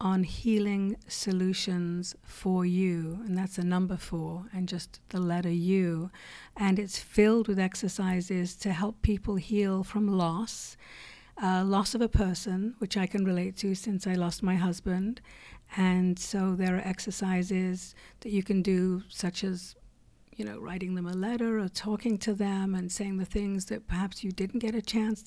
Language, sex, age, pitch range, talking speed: English, female, 50-69, 185-210 Hz, 175 wpm